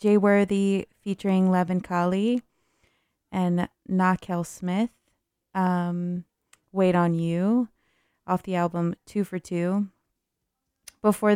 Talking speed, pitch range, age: 105 wpm, 170-190 Hz, 20-39